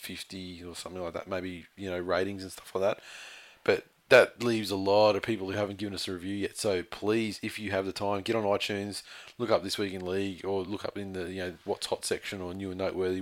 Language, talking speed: English, 260 wpm